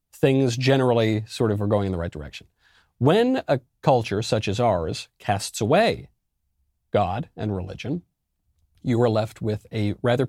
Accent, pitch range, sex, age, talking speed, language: American, 100-130 Hz, male, 40-59, 155 wpm, English